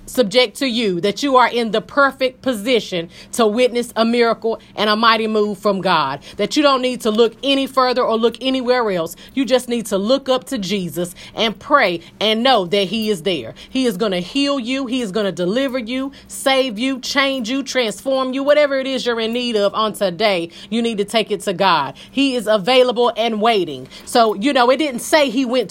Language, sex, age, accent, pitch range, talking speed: English, female, 30-49, American, 215-265 Hz, 220 wpm